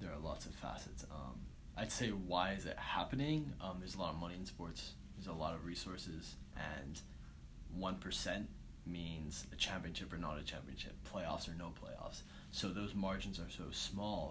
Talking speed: 185 wpm